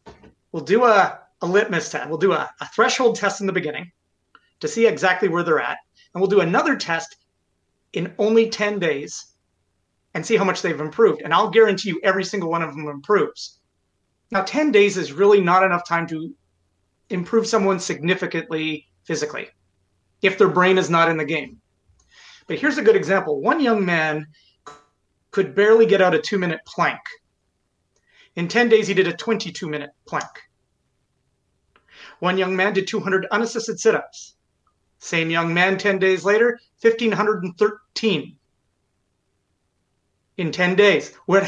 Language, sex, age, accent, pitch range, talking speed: English, male, 30-49, American, 155-210 Hz, 160 wpm